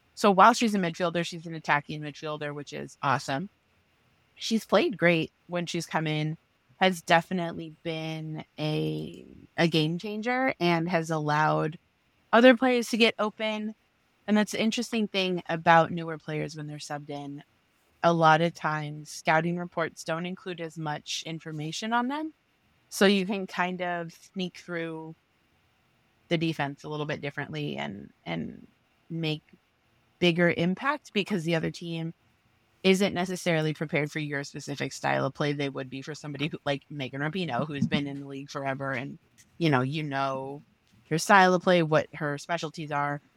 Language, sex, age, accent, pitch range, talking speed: English, female, 20-39, American, 140-175 Hz, 165 wpm